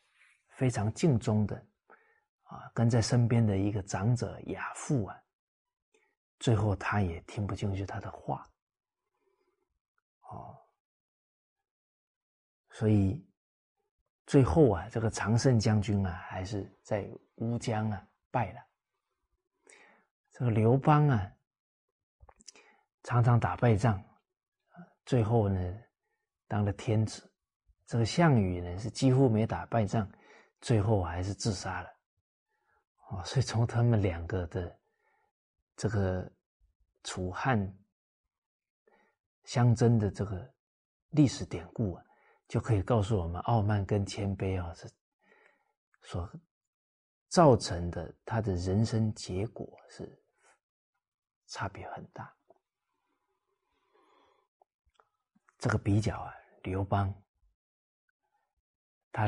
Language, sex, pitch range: Chinese, male, 95-125 Hz